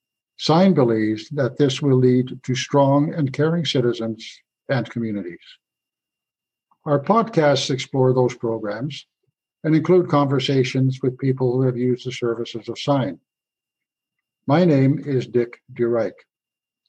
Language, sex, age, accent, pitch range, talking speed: English, male, 60-79, American, 125-155 Hz, 125 wpm